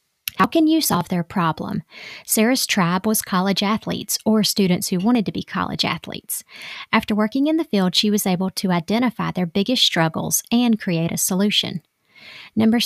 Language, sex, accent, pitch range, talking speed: English, female, American, 175-215 Hz, 175 wpm